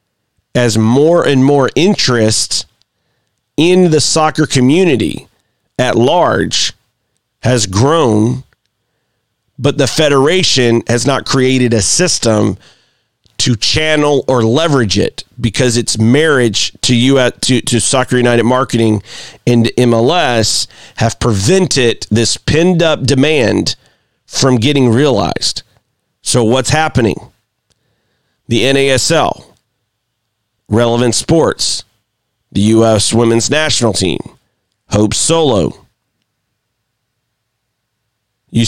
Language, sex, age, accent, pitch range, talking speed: English, male, 40-59, American, 115-145 Hz, 95 wpm